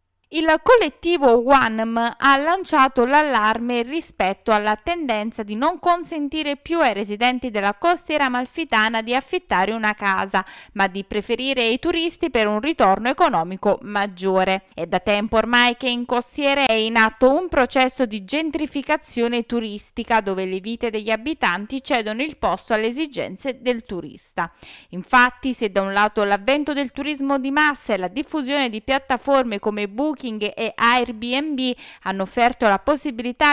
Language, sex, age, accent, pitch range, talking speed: Italian, female, 20-39, native, 215-290 Hz, 145 wpm